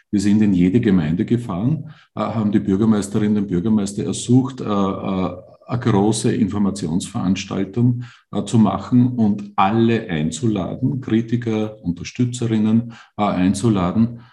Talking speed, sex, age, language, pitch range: 95 wpm, male, 50-69, English, 95-115 Hz